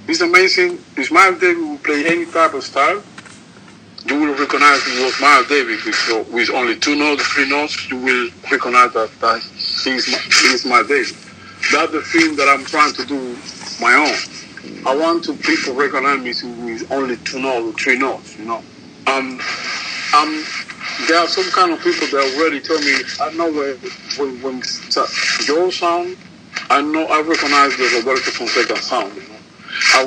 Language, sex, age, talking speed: English, male, 50-69, 175 wpm